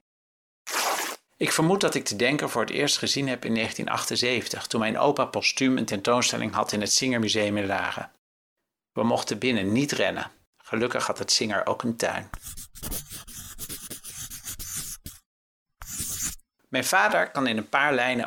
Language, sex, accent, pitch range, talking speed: Dutch, male, Dutch, 105-135 Hz, 145 wpm